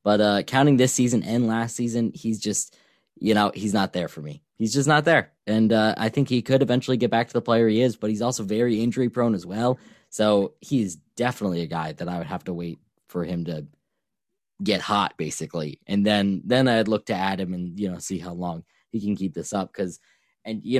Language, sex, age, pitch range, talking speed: English, male, 10-29, 95-120 Hz, 235 wpm